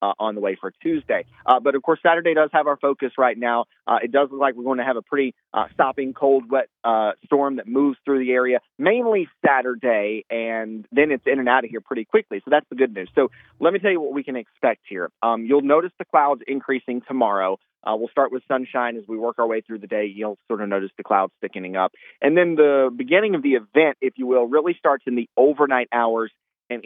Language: English